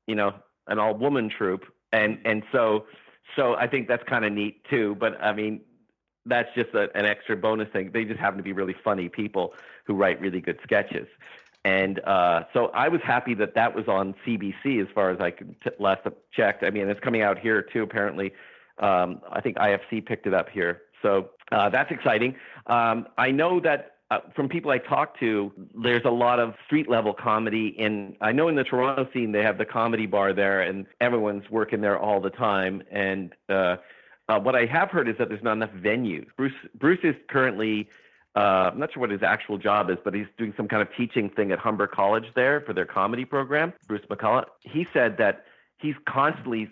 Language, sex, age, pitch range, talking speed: English, male, 40-59, 100-120 Hz, 210 wpm